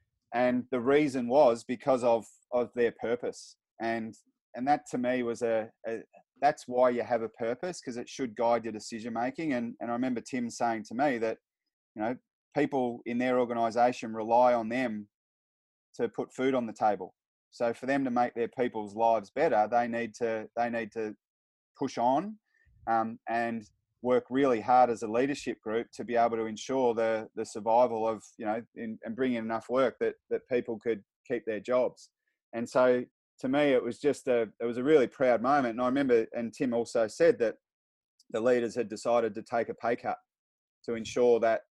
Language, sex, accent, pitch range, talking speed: English, male, Australian, 115-125 Hz, 200 wpm